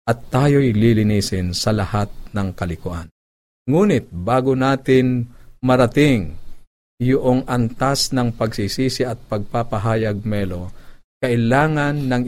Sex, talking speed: male, 100 wpm